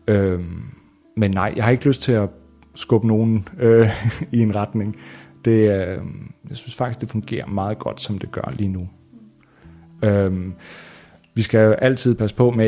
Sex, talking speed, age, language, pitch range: male, 175 wpm, 30-49, Danish, 95-110 Hz